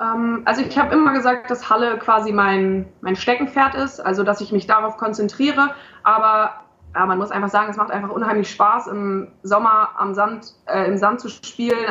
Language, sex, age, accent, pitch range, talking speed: German, female, 20-39, German, 210-245 Hz, 190 wpm